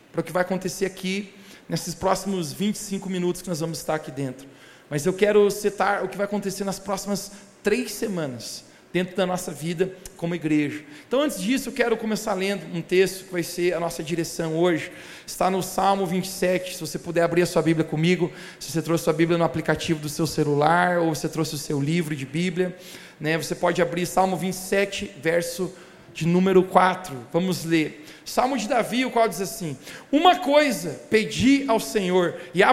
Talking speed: 200 wpm